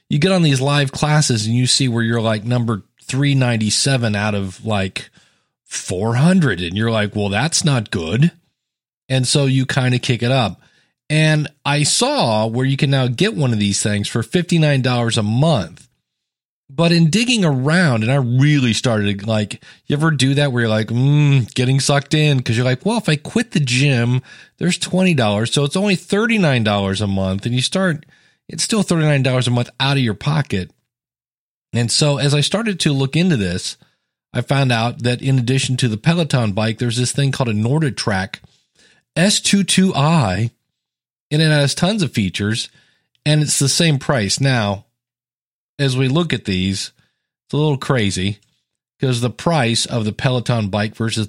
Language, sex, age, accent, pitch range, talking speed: English, male, 40-59, American, 115-155 Hz, 180 wpm